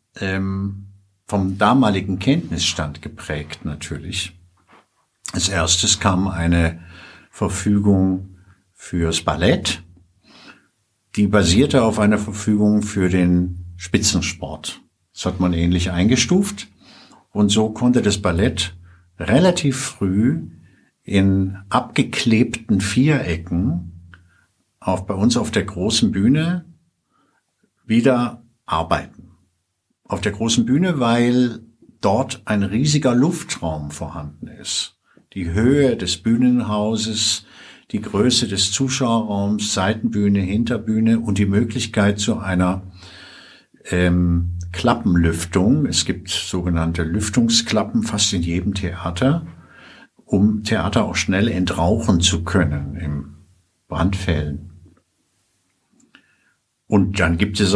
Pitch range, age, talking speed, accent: 90-110 Hz, 60-79, 95 wpm, German